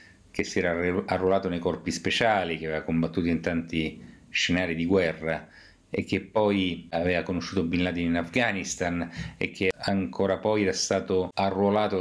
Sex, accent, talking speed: male, native, 155 wpm